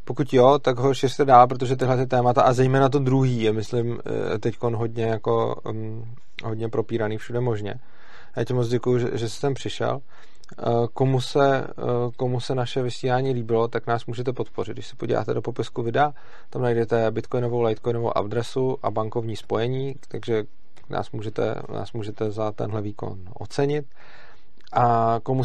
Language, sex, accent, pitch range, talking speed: Czech, male, native, 110-125 Hz, 160 wpm